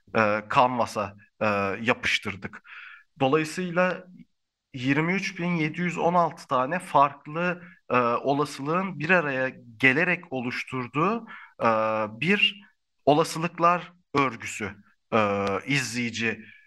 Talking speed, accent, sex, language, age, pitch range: 70 wpm, native, male, Turkish, 50-69, 115-175 Hz